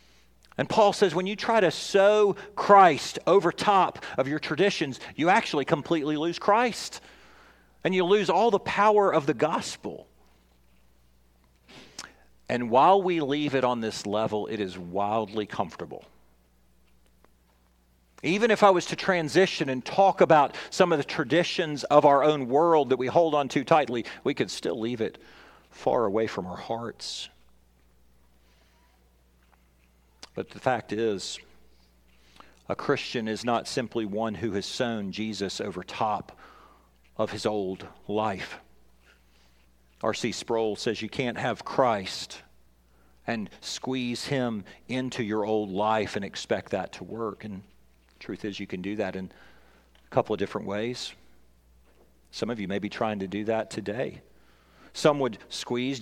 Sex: male